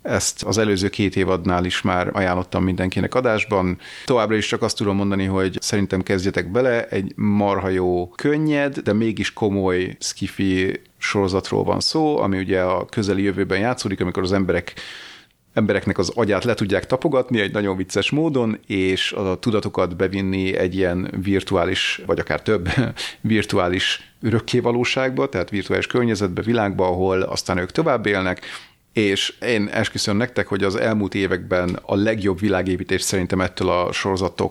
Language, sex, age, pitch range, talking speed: Hungarian, male, 30-49, 95-110 Hz, 150 wpm